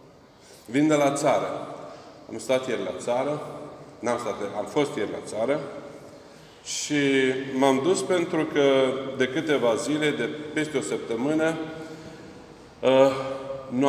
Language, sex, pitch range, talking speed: Romanian, male, 130-150 Hz, 130 wpm